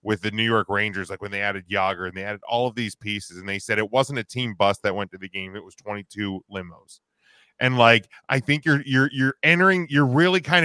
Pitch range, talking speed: 110-145 Hz, 255 wpm